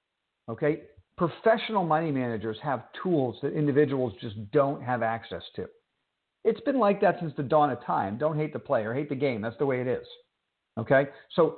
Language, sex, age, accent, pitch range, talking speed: English, male, 50-69, American, 120-155 Hz, 185 wpm